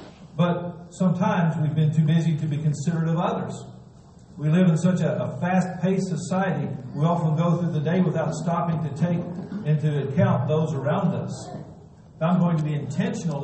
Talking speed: 175 wpm